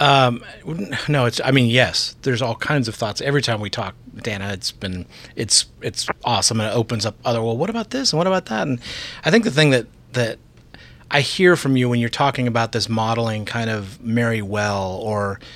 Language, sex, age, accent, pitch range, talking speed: English, male, 30-49, American, 115-140 Hz, 215 wpm